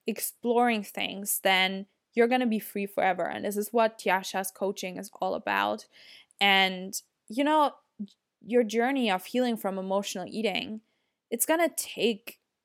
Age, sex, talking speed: 10-29, female, 140 wpm